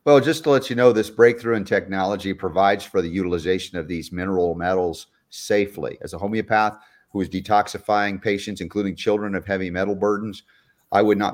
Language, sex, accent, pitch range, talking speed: English, male, American, 90-105 Hz, 185 wpm